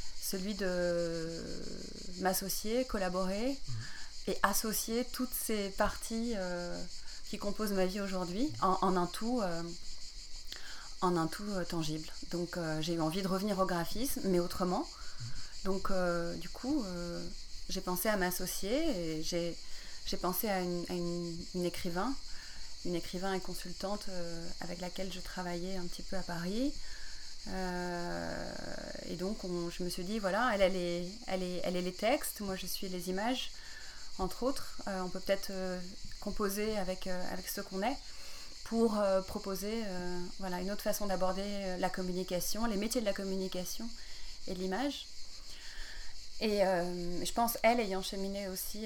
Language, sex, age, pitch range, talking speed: French, female, 30-49, 180-205 Hz, 155 wpm